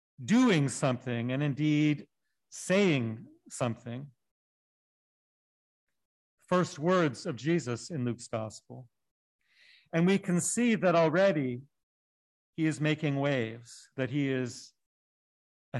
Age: 40-59